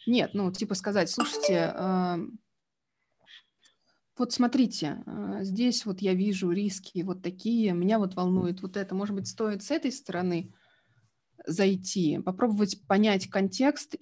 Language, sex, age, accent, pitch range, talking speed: Russian, female, 20-39, native, 190-245 Hz, 125 wpm